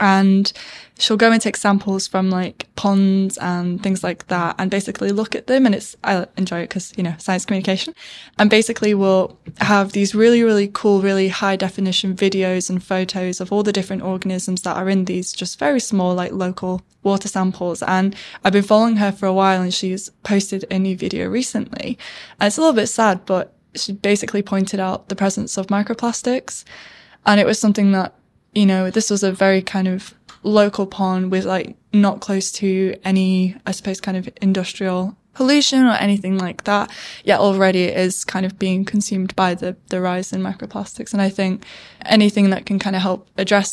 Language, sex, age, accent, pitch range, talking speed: English, female, 10-29, British, 185-205 Hz, 195 wpm